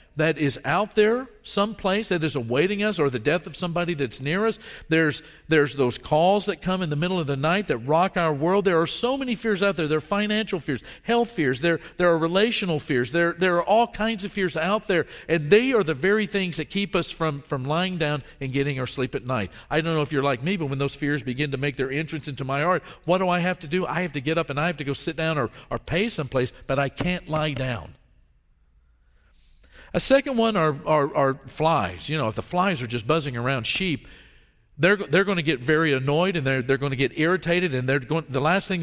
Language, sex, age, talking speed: English, male, 50-69, 250 wpm